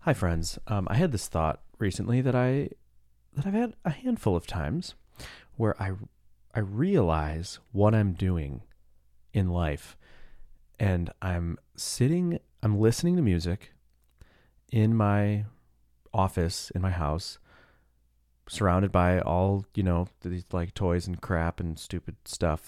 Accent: American